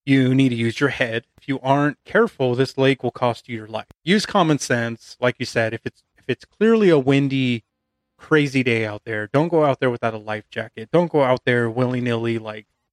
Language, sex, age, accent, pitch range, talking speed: English, male, 30-49, American, 115-140 Hz, 225 wpm